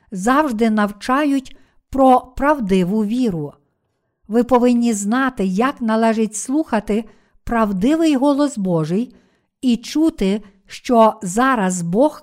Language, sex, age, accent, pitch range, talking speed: Ukrainian, female, 50-69, native, 210-260 Hz, 95 wpm